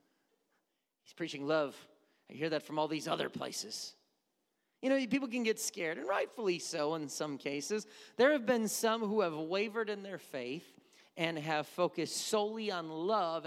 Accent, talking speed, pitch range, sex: American, 175 wpm, 145-210 Hz, male